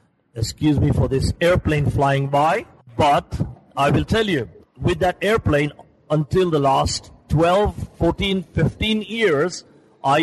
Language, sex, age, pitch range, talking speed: Romanian, male, 50-69, 120-155 Hz, 135 wpm